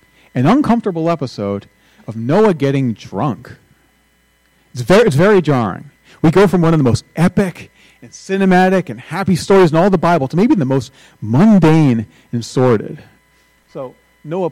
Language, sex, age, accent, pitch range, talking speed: English, male, 40-59, American, 125-175 Hz, 155 wpm